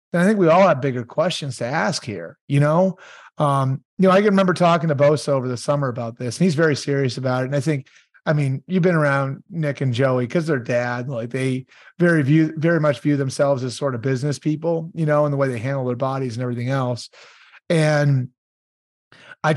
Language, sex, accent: English, male, American